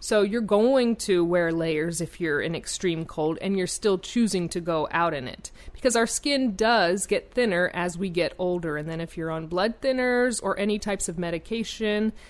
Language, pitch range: English, 170-220 Hz